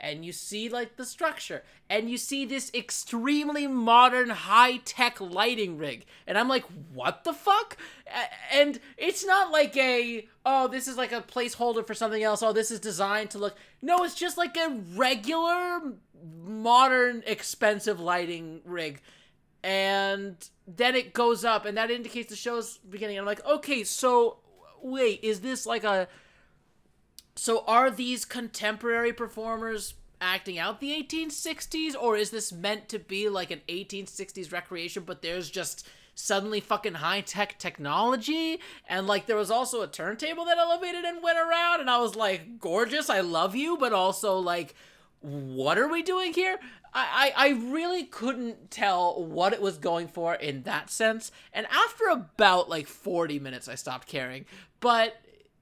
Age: 20-39